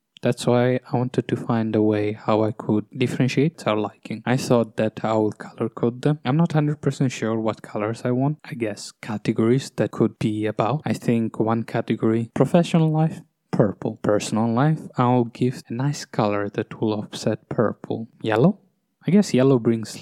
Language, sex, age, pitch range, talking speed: English, male, 20-39, 110-135 Hz, 180 wpm